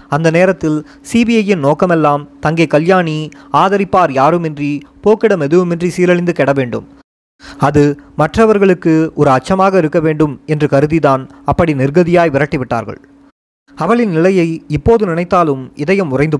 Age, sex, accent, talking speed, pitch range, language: 20-39, male, native, 110 wpm, 145-185 Hz, Tamil